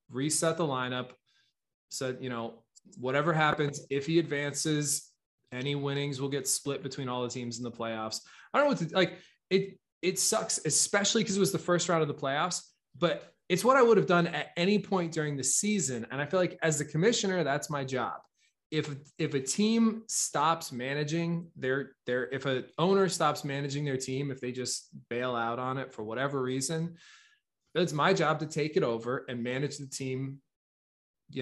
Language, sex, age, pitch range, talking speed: English, male, 20-39, 130-165 Hz, 195 wpm